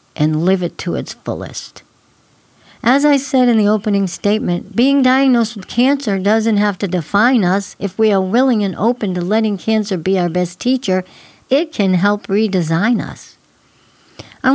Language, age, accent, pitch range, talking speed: English, 60-79, American, 185-235 Hz, 170 wpm